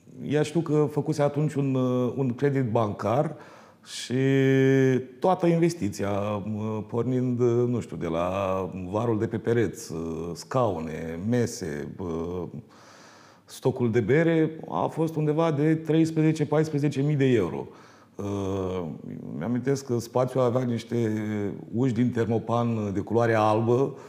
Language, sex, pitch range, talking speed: Romanian, male, 105-140 Hz, 110 wpm